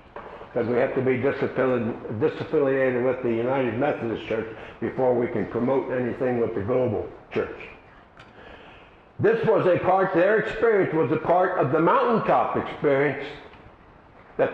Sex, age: male, 60-79